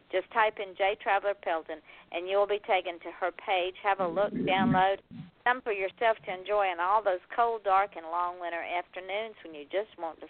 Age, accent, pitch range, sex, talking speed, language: 50-69, American, 170-205 Hz, female, 210 wpm, English